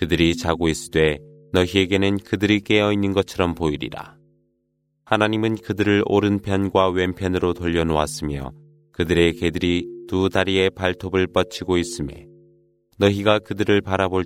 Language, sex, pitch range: Korean, male, 85-105 Hz